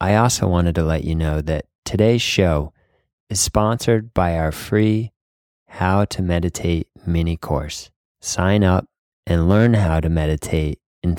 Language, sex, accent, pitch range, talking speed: English, male, American, 80-100 Hz, 150 wpm